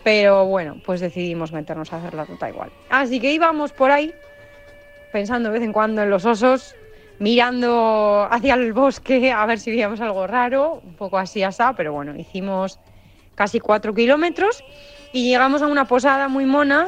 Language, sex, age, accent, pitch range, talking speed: Spanish, female, 30-49, Spanish, 170-235 Hz, 180 wpm